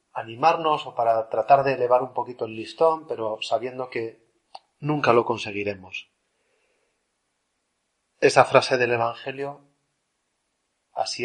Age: 30-49